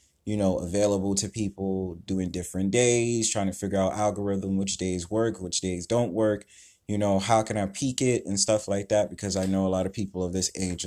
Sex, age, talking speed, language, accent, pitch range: male, 20-39, 225 wpm, English, American, 95-110 Hz